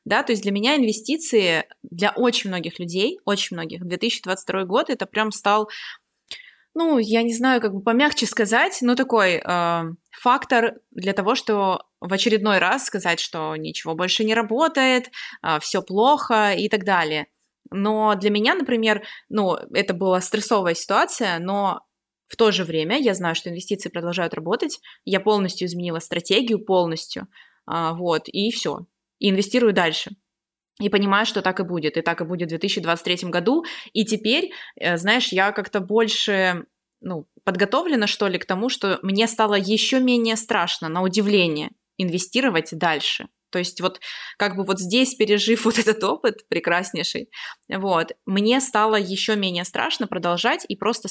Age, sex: 20-39, female